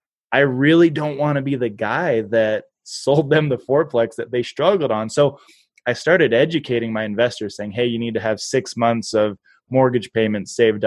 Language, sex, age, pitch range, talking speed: English, male, 20-39, 110-130 Hz, 195 wpm